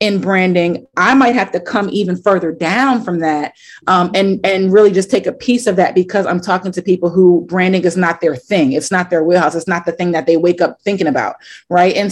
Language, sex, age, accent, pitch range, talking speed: English, female, 30-49, American, 185-225 Hz, 245 wpm